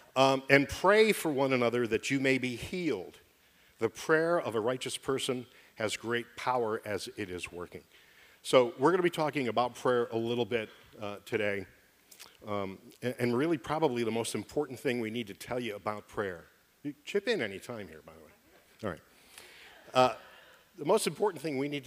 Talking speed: 195 wpm